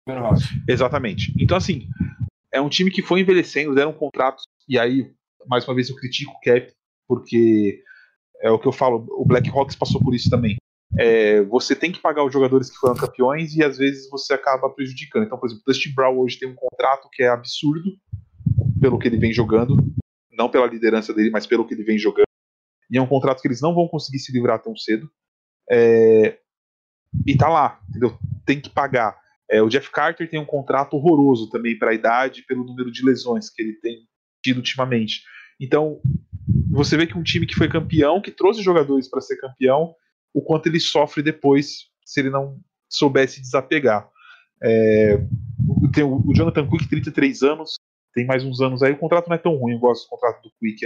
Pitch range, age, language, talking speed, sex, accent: 125-160 Hz, 20-39, Portuguese, 195 wpm, male, Brazilian